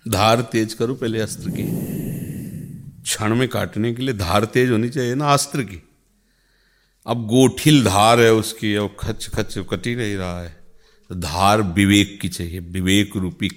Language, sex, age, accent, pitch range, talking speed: Hindi, male, 50-69, native, 100-130 Hz, 170 wpm